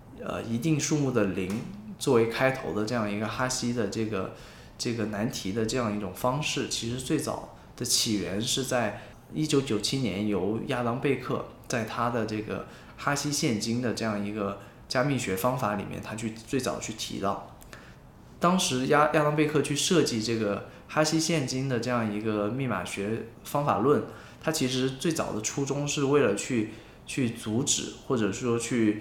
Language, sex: Chinese, male